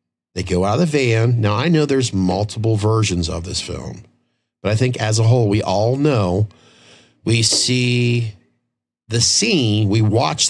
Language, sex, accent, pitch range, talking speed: English, male, American, 95-125 Hz, 170 wpm